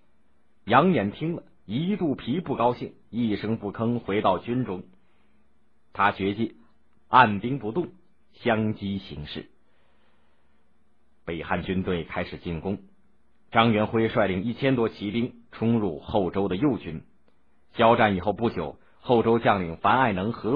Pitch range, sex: 75-120 Hz, male